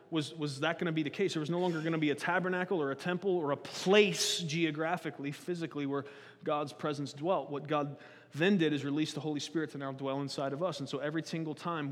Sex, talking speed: male, 245 wpm